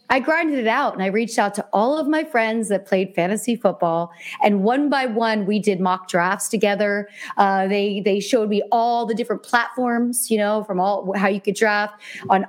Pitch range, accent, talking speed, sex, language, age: 205-245 Hz, American, 210 wpm, female, English, 40-59